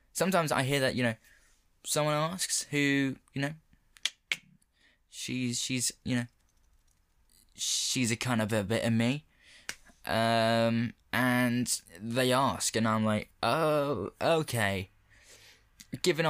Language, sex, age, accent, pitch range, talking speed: English, male, 10-29, British, 95-135 Hz, 120 wpm